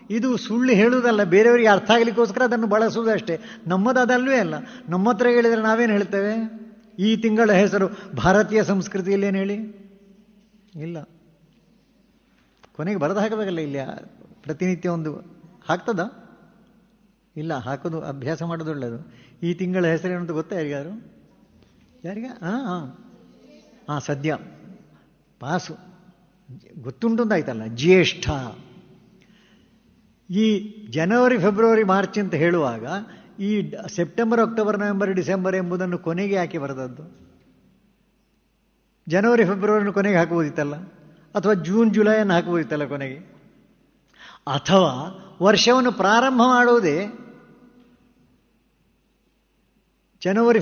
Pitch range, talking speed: 175-220 Hz, 90 wpm